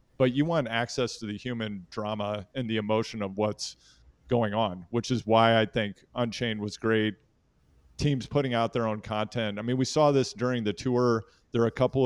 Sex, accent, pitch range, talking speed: male, American, 100-120 Hz, 205 wpm